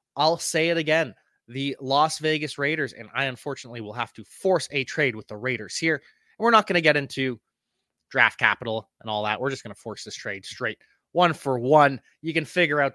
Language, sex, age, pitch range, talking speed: English, male, 20-39, 120-160 Hz, 220 wpm